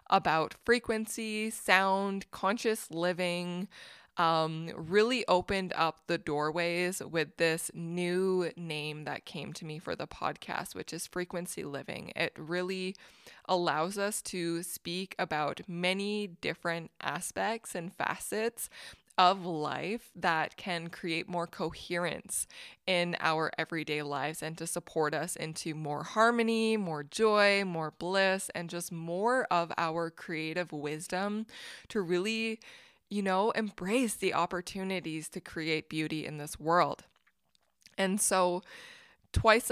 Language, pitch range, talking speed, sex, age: English, 160-200 Hz, 125 wpm, female, 20-39